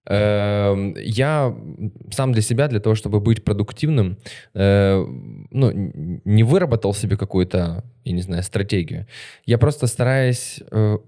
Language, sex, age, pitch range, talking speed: Ukrainian, male, 20-39, 100-120 Hz, 115 wpm